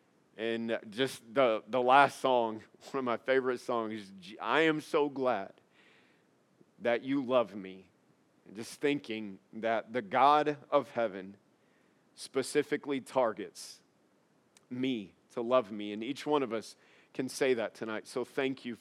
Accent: American